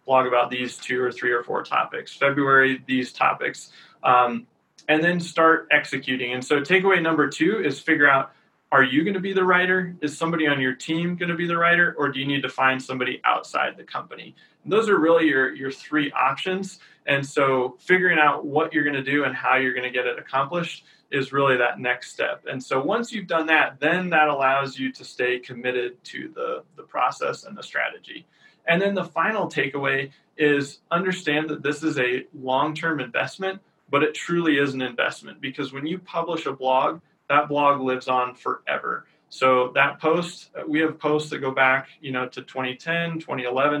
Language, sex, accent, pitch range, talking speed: English, male, American, 130-165 Hz, 200 wpm